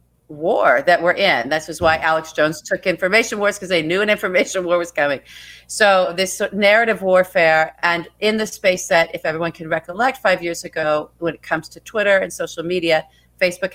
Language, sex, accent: English, female, American